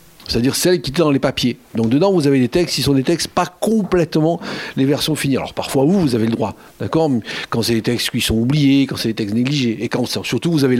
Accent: French